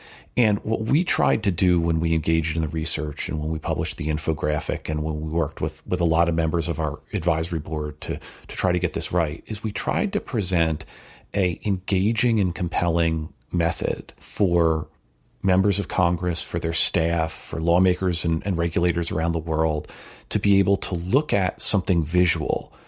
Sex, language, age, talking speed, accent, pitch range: male, English, 40-59, 190 wpm, American, 80-100 Hz